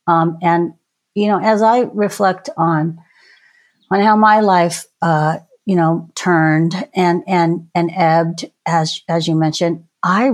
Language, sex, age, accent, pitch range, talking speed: English, female, 50-69, American, 160-195 Hz, 145 wpm